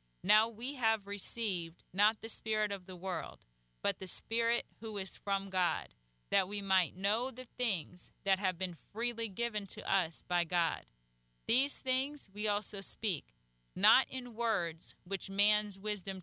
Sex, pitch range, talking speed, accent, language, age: female, 170-225 Hz, 160 wpm, American, English, 30-49